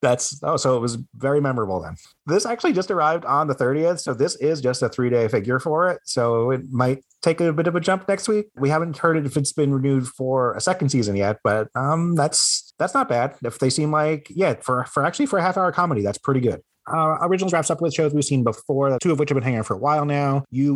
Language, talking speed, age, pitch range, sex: English, 265 wpm, 30-49, 110-145 Hz, male